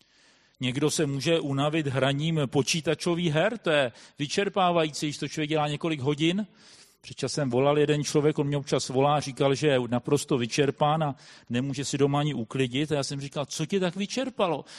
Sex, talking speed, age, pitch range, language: male, 180 wpm, 40-59, 145-185 Hz, Czech